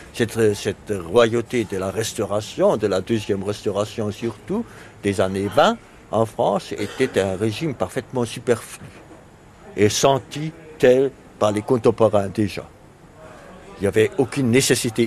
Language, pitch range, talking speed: French, 110-150 Hz, 130 wpm